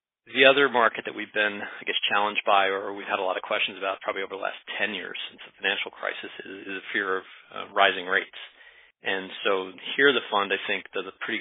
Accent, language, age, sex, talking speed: American, English, 40-59, male, 235 wpm